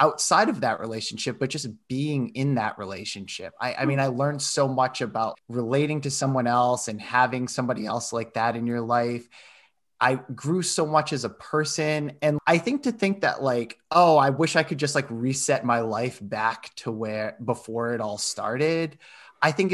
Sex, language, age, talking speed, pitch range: male, English, 20-39, 195 wpm, 115-155 Hz